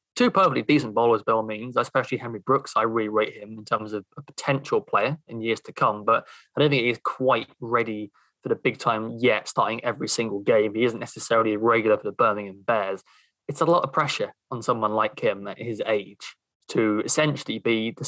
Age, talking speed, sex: 20-39, 210 wpm, male